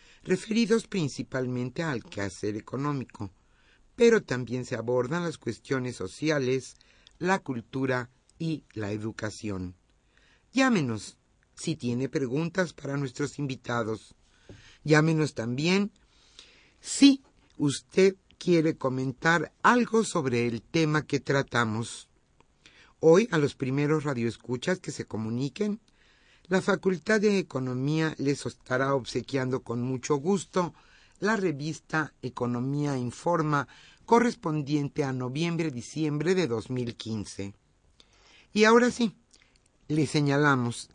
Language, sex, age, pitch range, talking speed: Spanish, male, 50-69, 120-165 Hz, 100 wpm